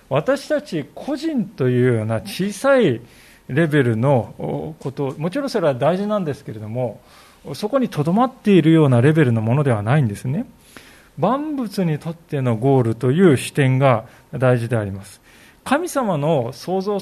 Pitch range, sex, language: 130-210 Hz, male, Japanese